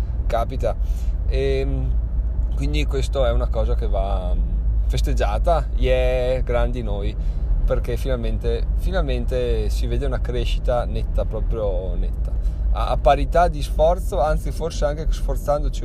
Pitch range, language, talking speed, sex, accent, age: 95-130 Hz, Italian, 115 wpm, male, native, 20-39